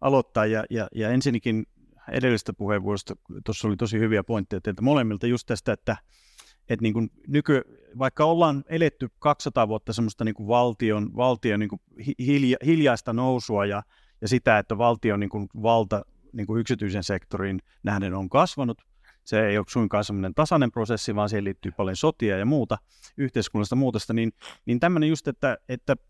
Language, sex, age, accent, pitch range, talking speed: Finnish, male, 30-49, native, 105-135 Hz, 160 wpm